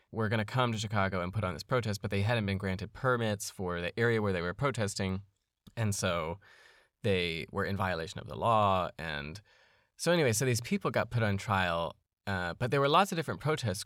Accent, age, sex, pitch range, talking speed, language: American, 20-39, male, 95-115 Hz, 220 wpm, English